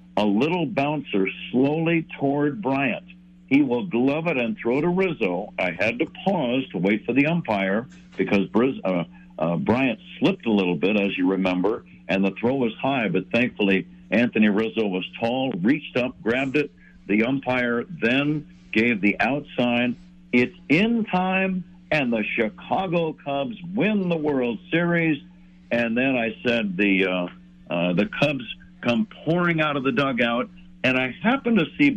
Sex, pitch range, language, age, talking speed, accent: male, 110-180 Hz, English, 60-79, 160 wpm, American